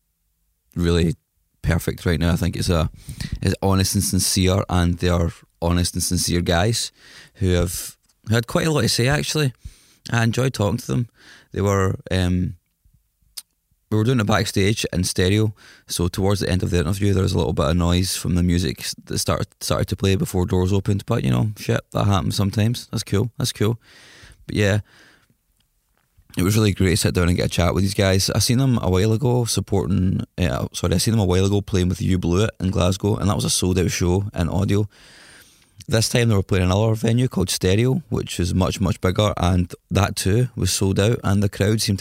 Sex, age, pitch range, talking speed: male, 20-39, 90-110 Hz, 215 wpm